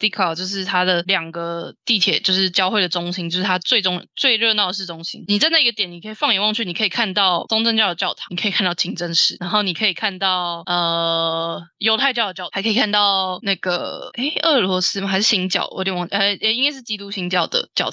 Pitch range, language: 180-230 Hz, Chinese